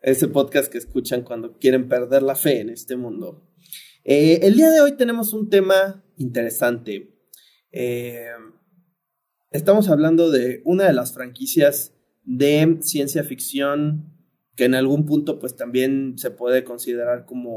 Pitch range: 120-160 Hz